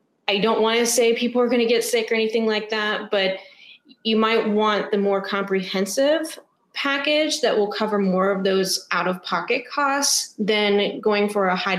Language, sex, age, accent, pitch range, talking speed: English, female, 30-49, American, 190-235 Hz, 185 wpm